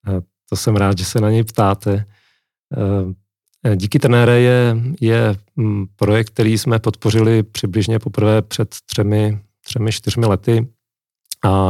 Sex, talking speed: male, 125 wpm